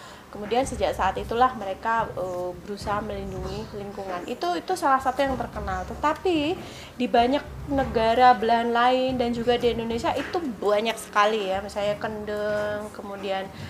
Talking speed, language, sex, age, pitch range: 140 wpm, Indonesian, female, 20-39, 195-245 Hz